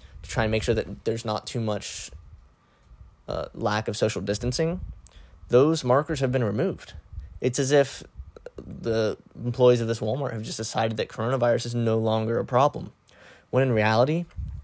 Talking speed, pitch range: 165 wpm, 95-125 Hz